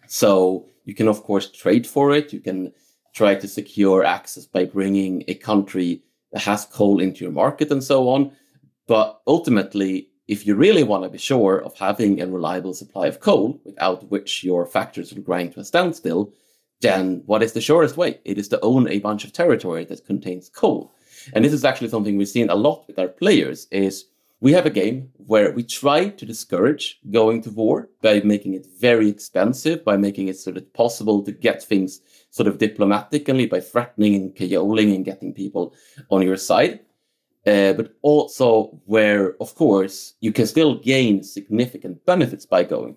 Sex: male